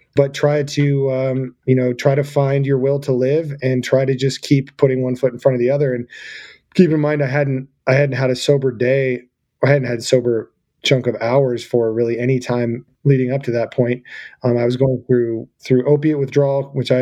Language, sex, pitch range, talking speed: English, male, 120-135 Hz, 225 wpm